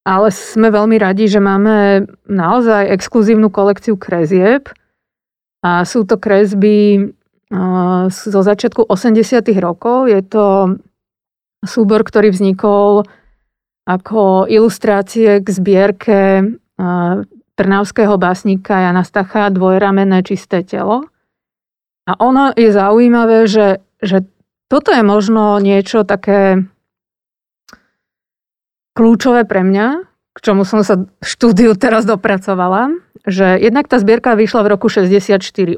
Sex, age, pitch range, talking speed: female, 30-49, 195-220 Hz, 105 wpm